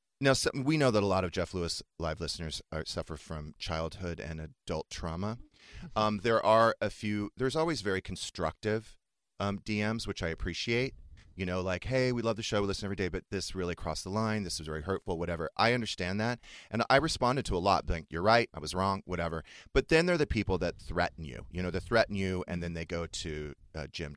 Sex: male